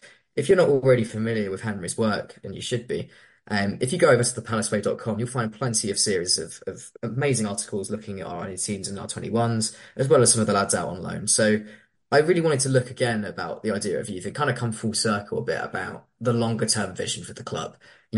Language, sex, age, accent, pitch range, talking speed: English, male, 20-39, British, 105-120 Hz, 245 wpm